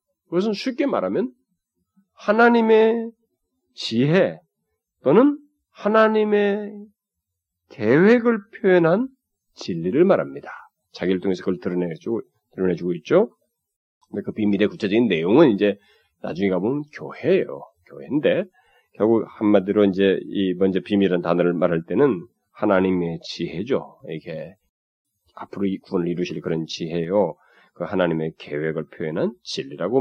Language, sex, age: Korean, male, 40-59